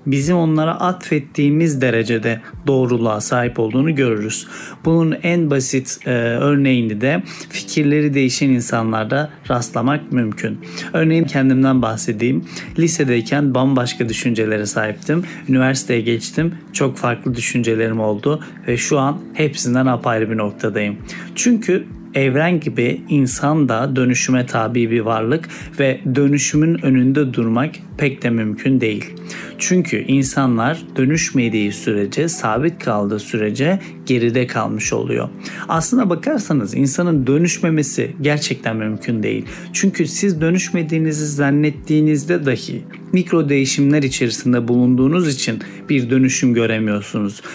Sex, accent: male, native